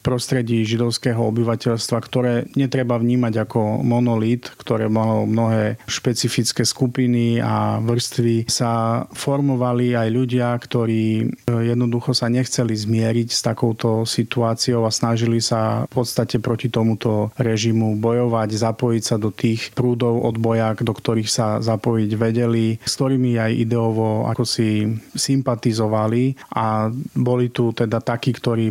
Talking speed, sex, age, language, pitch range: 125 wpm, male, 30-49, Slovak, 110-120 Hz